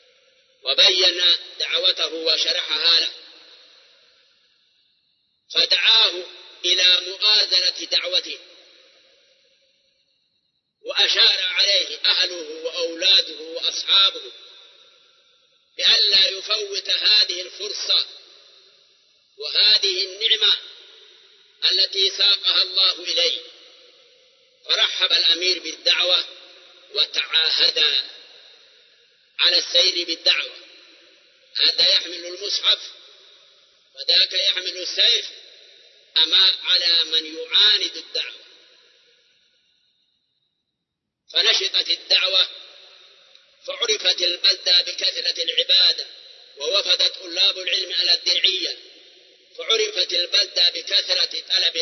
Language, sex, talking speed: Arabic, male, 65 wpm